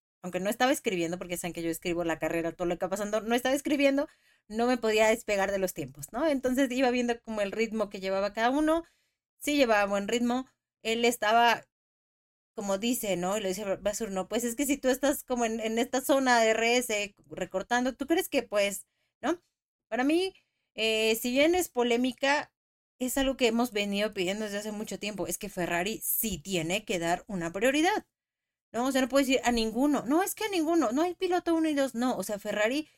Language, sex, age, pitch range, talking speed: Spanish, female, 30-49, 190-250 Hz, 215 wpm